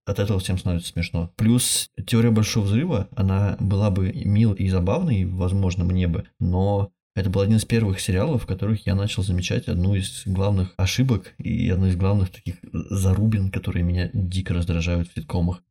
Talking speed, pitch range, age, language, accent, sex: 175 wpm, 90-110 Hz, 20-39, Russian, native, male